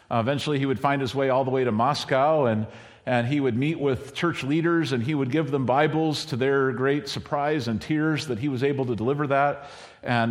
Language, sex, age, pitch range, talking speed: English, male, 50-69, 130-155 Hz, 225 wpm